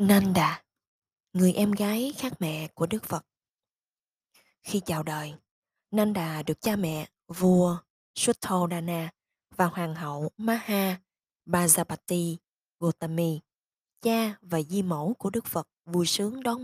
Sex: female